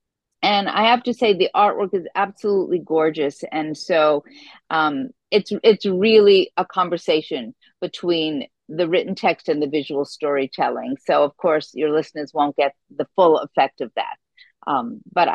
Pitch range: 160-225 Hz